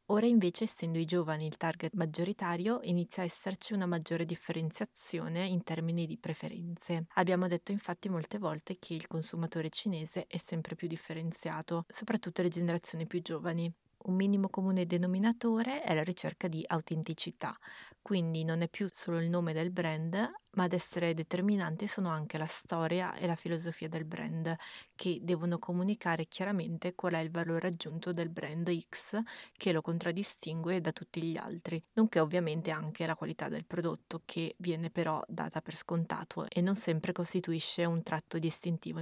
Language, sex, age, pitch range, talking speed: Italian, female, 20-39, 165-185 Hz, 165 wpm